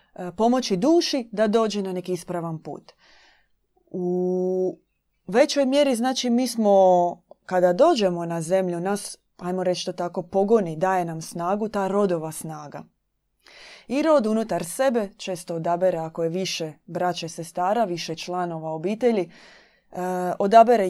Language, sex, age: Croatian, female, 30-49